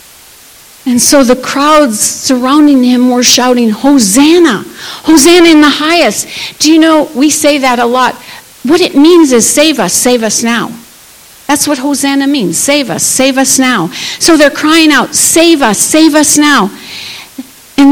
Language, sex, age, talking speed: English, female, 50-69, 165 wpm